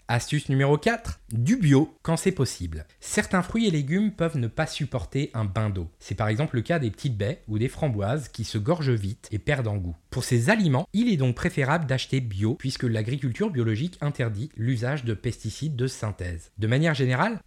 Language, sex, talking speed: French, male, 205 wpm